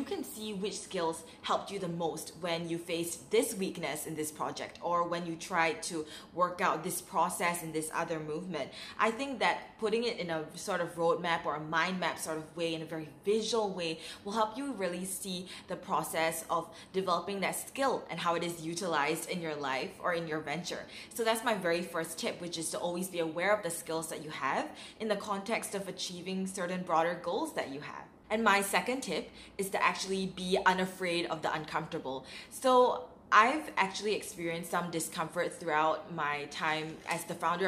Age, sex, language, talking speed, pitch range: 20-39, female, English, 200 wpm, 165-195 Hz